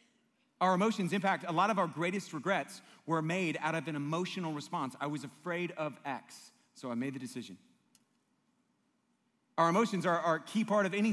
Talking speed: 195 wpm